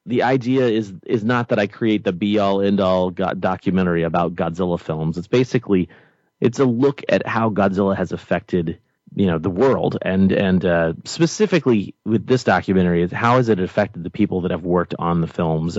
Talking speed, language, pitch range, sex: 185 wpm, English, 90-110 Hz, male